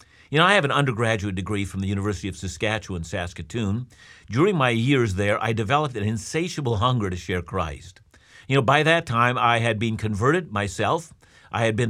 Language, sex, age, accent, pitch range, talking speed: English, male, 50-69, American, 105-140 Hz, 190 wpm